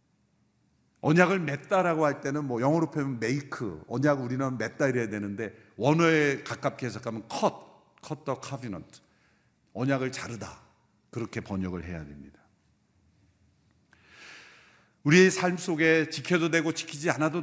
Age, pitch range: 50-69, 125-200 Hz